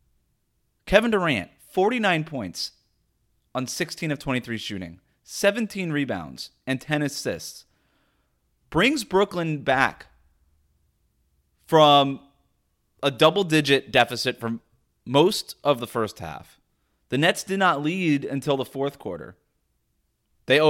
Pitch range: 115-170 Hz